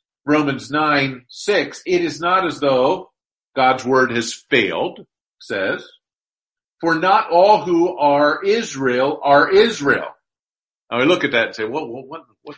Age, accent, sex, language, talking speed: 50-69, American, male, English, 150 wpm